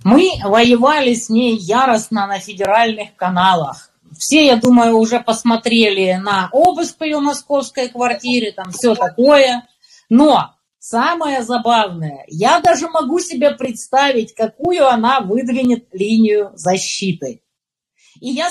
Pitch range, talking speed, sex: 215-320 Hz, 115 wpm, female